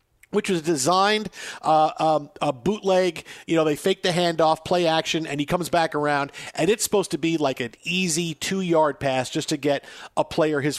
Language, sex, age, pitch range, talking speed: English, male, 50-69, 145-185 Hz, 200 wpm